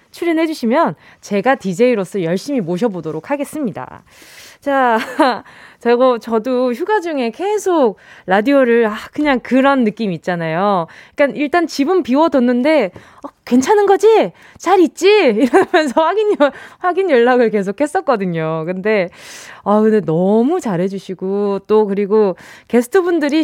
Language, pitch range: Korean, 215-315 Hz